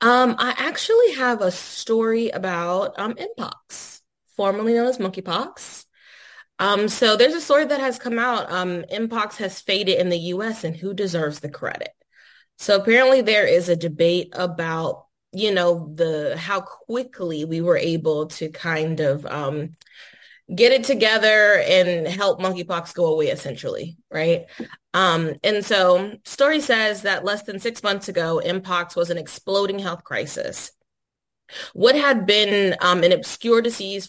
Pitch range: 170-220 Hz